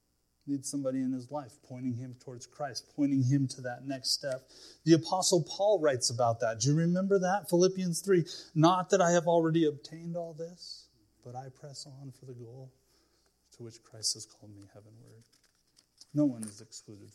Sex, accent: male, American